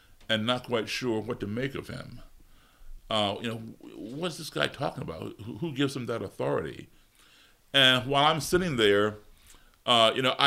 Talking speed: 170 wpm